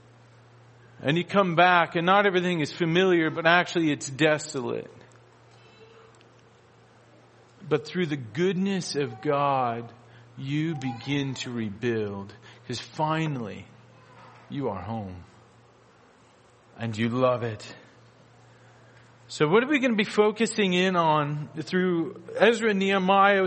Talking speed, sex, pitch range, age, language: 120 wpm, male, 120-185 Hz, 40-59, English